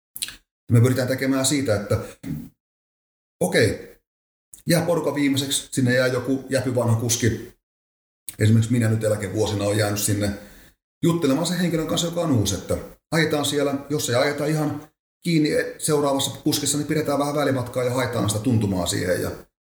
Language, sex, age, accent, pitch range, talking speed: Finnish, male, 30-49, native, 105-135 Hz, 145 wpm